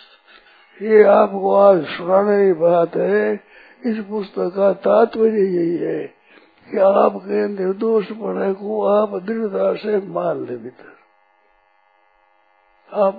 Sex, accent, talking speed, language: male, native, 110 wpm, Hindi